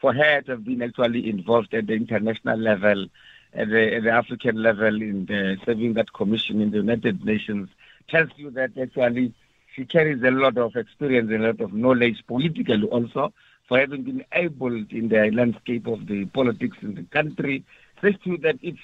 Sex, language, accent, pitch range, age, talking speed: male, English, South African, 120-150 Hz, 60-79, 190 wpm